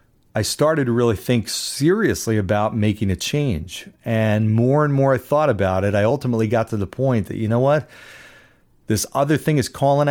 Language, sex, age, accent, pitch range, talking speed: English, male, 40-59, American, 105-140 Hz, 195 wpm